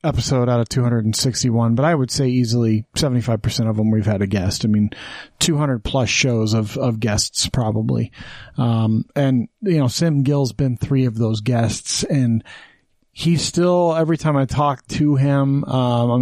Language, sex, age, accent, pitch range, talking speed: English, male, 30-49, American, 120-150 Hz, 170 wpm